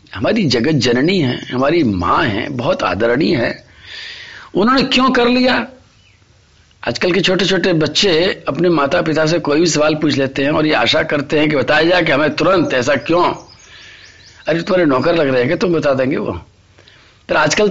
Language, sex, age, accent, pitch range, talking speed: Hindi, male, 50-69, native, 130-210 Hz, 190 wpm